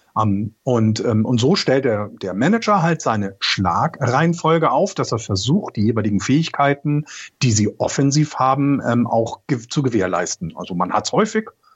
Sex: male